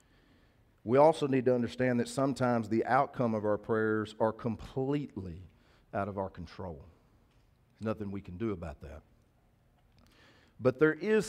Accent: American